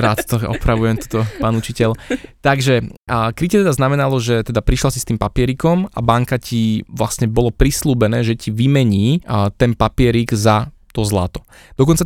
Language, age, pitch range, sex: Slovak, 20-39, 110-130 Hz, male